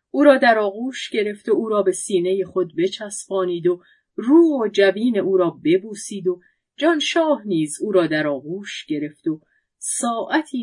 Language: Persian